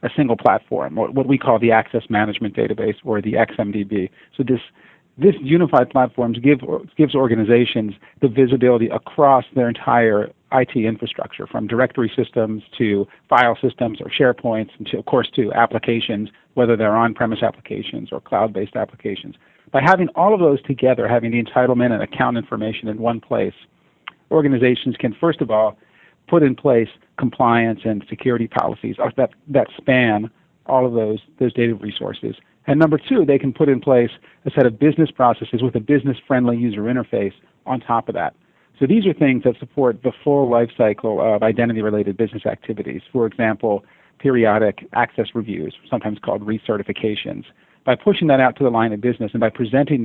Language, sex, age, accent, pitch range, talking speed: English, male, 50-69, American, 110-135 Hz, 170 wpm